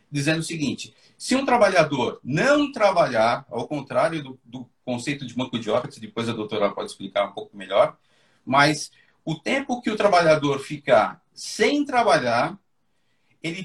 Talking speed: 155 wpm